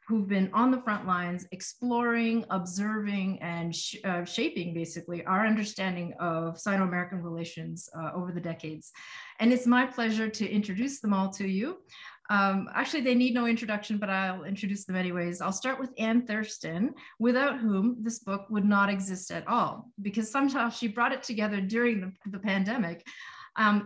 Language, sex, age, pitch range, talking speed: English, female, 40-59, 180-220 Hz, 170 wpm